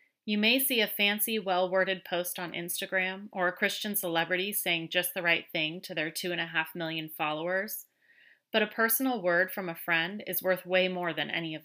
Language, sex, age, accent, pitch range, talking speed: English, female, 30-49, American, 170-205 Hz, 205 wpm